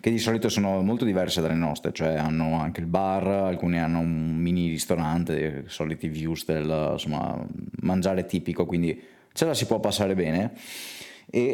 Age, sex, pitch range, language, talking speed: 20-39, male, 85-105 Hz, Italian, 160 wpm